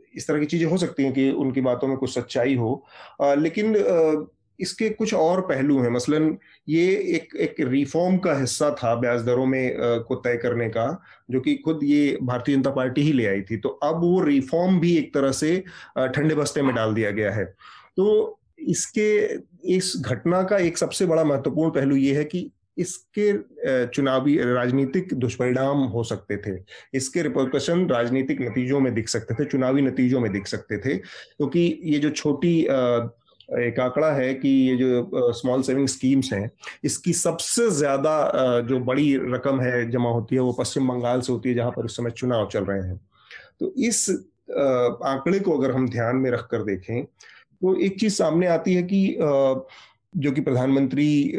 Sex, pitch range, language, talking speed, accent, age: male, 120-155 Hz, Hindi, 145 wpm, native, 30-49